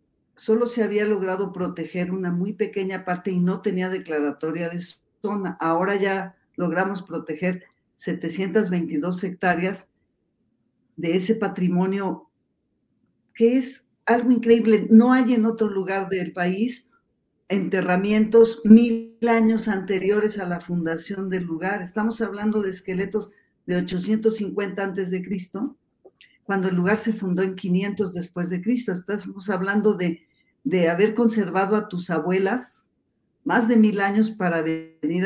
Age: 40-59